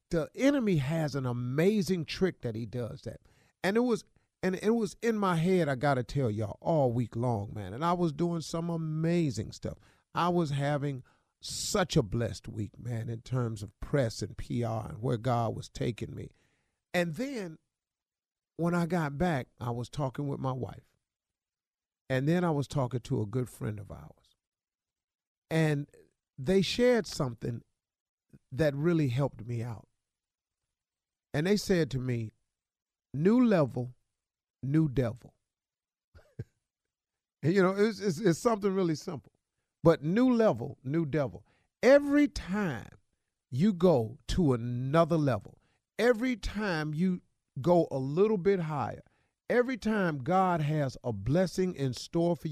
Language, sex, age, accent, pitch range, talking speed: English, male, 50-69, American, 125-185 Hz, 150 wpm